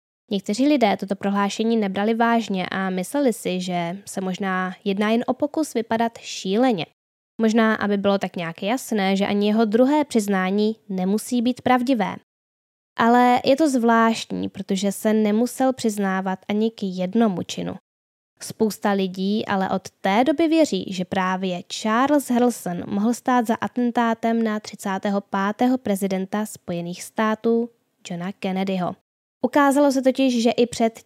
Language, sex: Czech, female